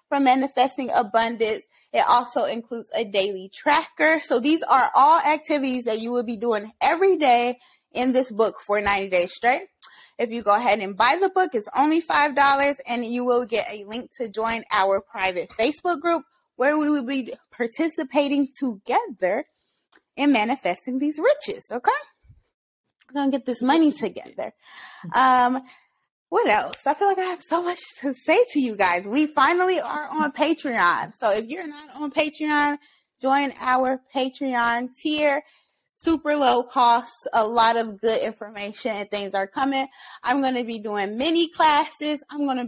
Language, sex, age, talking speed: English, female, 20-39, 165 wpm